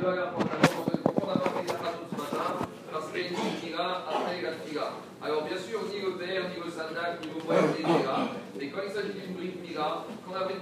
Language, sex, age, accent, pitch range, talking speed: French, male, 40-59, French, 175-205 Hz, 145 wpm